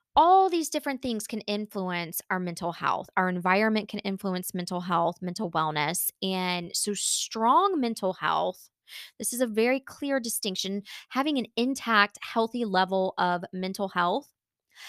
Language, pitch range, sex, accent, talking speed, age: English, 190-255 Hz, female, American, 145 wpm, 20-39